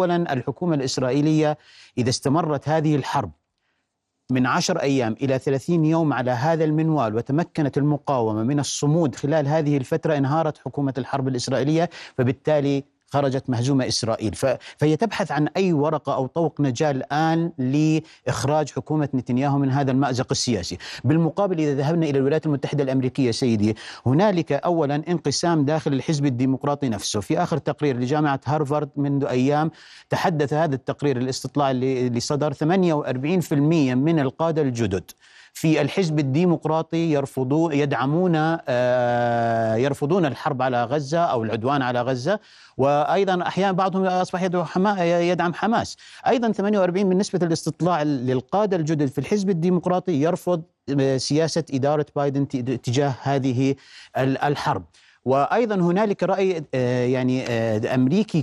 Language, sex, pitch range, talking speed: Arabic, male, 135-165 Hz, 120 wpm